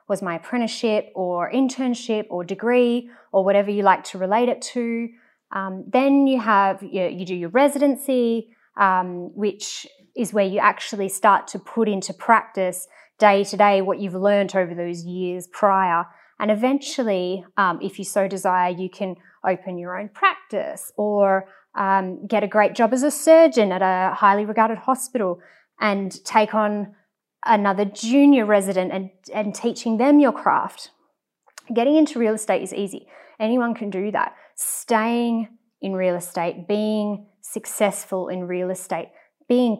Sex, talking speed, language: female, 160 wpm, English